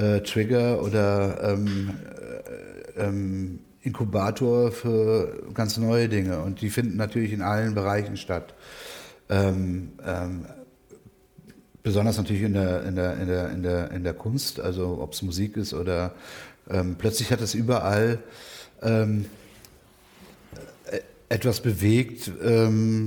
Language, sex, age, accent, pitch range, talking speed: German, male, 60-79, German, 90-110 Hz, 110 wpm